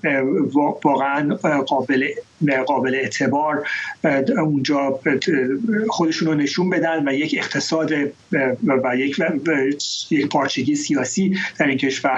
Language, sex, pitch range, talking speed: English, male, 140-180 Hz, 95 wpm